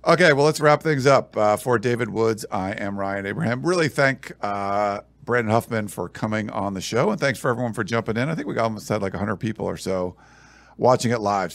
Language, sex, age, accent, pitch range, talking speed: English, male, 50-69, American, 100-140 Hz, 230 wpm